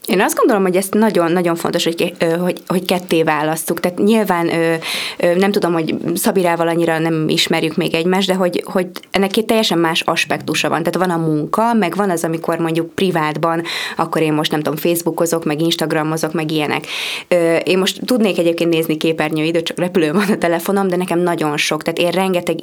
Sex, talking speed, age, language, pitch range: female, 190 wpm, 20-39, Hungarian, 160-190 Hz